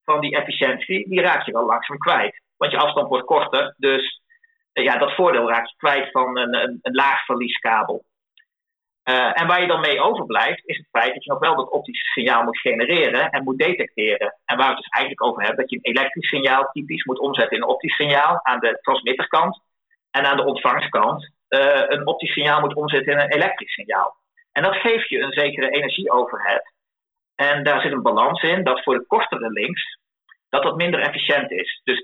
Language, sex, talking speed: Dutch, male, 205 wpm